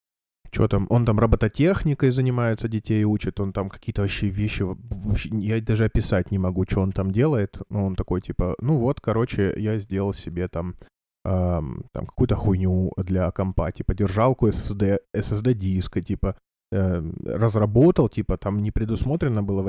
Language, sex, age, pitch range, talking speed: Russian, male, 20-39, 95-110 Hz, 160 wpm